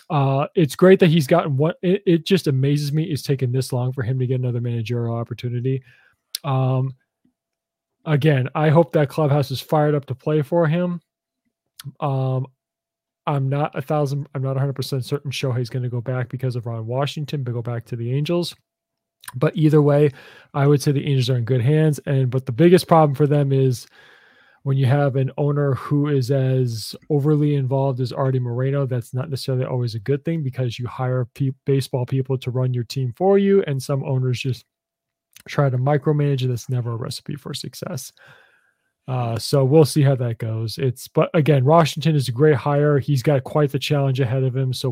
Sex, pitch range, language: male, 130-150 Hz, English